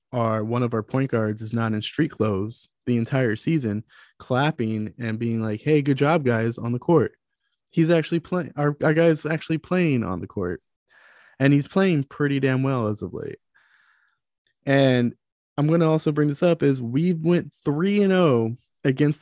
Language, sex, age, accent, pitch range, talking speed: English, male, 20-39, American, 115-150 Hz, 185 wpm